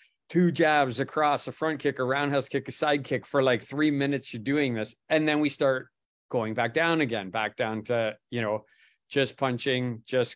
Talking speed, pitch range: 205 wpm, 115-145 Hz